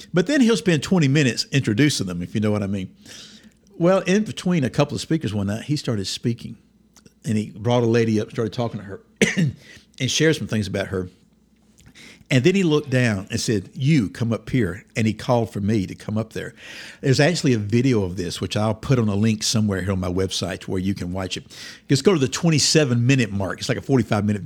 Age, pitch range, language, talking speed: 60-79, 105-150 Hz, English, 235 wpm